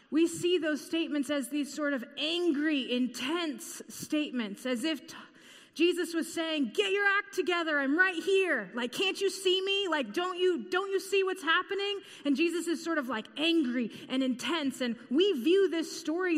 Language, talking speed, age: English, 185 wpm, 20-39